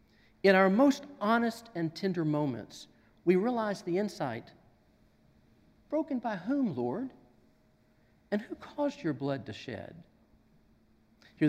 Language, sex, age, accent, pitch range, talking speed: English, male, 50-69, American, 115-170 Hz, 120 wpm